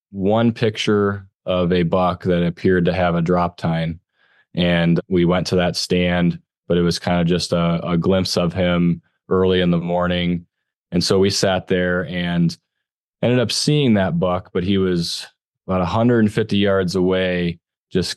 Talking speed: 170 wpm